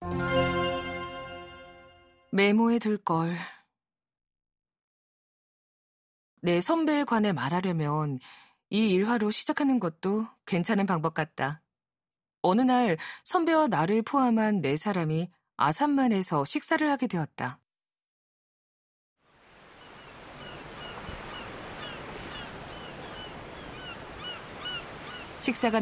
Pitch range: 160-220 Hz